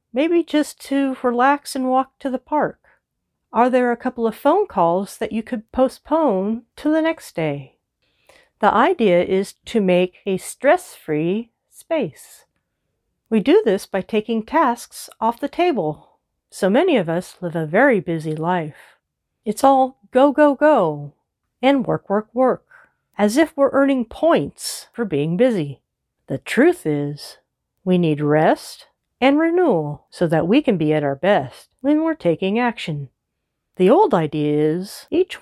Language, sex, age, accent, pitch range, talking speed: English, female, 40-59, American, 170-275 Hz, 155 wpm